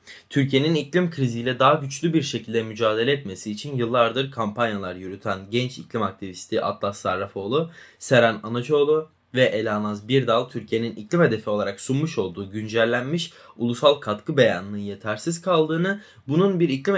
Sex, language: male, Turkish